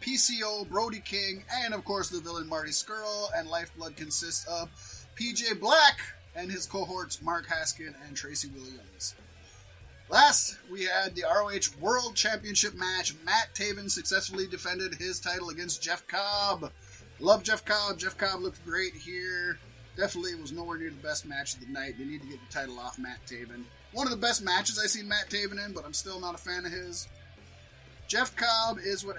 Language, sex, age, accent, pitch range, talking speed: English, male, 20-39, American, 140-200 Hz, 185 wpm